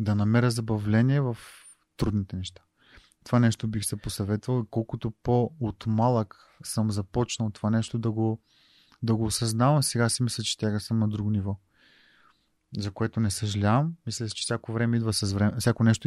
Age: 30-49